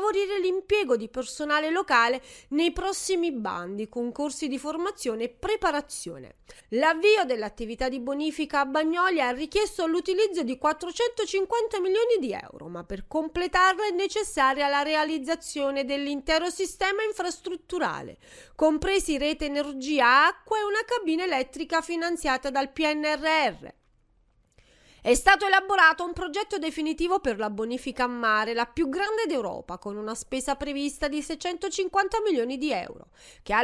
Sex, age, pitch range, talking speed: female, 30-49, 265-375 Hz, 130 wpm